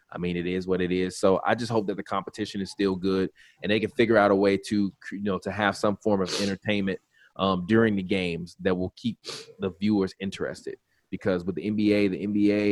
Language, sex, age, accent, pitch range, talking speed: English, male, 20-39, American, 95-105 Hz, 230 wpm